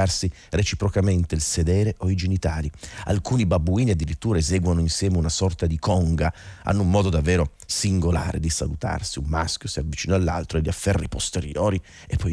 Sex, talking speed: male, 160 wpm